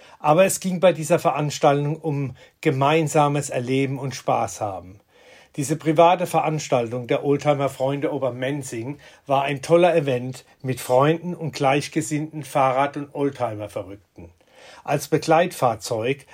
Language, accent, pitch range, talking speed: German, German, 135-155 Hz, 115 wpm